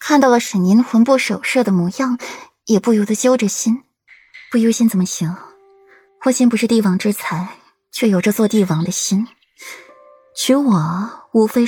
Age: 20-39